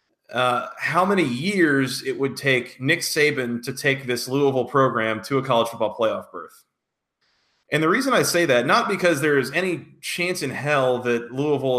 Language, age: English, 30-49